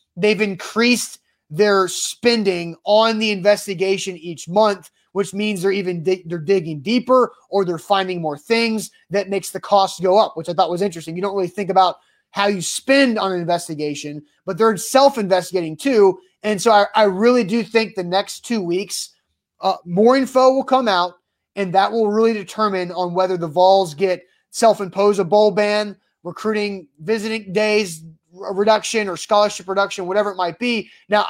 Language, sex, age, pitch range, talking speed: English, male, 20-39, 180-215 Hz, 180 wpm